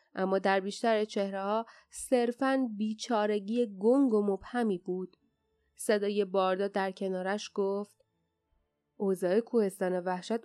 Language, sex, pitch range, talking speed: Persian, female, 185-235 Hz, 115 wpm